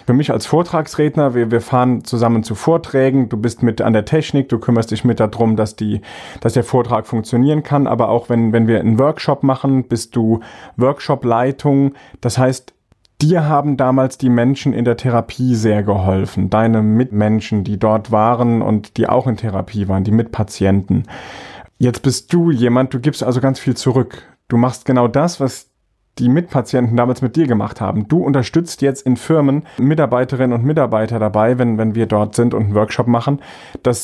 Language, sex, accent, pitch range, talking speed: German, male, German, 115-135 Hz, 180 wpm